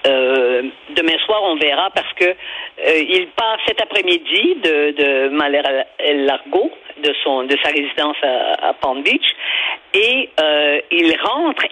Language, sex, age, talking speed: French, female, 50-69, 155 wpm